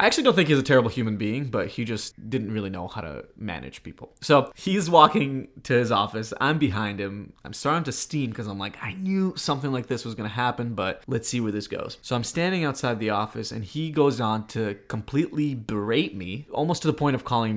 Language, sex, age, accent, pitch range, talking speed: English, male, 20-39, American, 105-140 Hz, 235 wpm